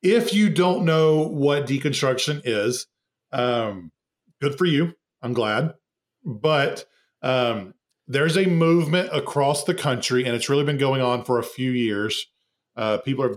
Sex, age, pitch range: male, 40-59, 120-145 Hz